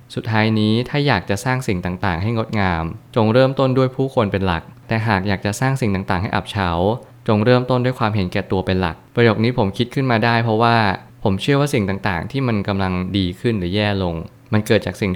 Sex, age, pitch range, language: male, 20-39, 95-120 Hz, Thai